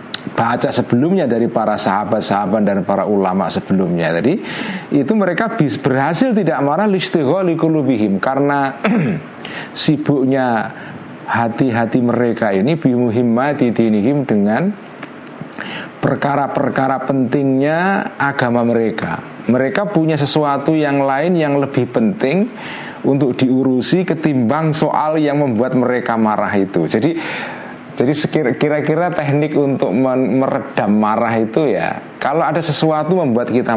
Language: Indonesian